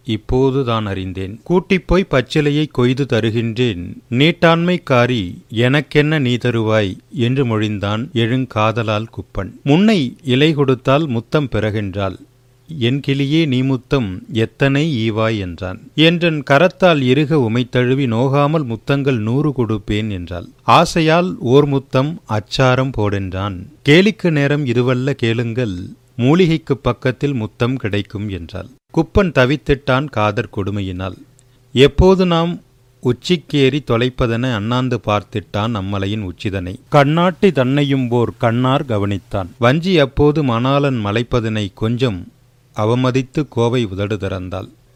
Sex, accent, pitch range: male, native, 110-145 Hz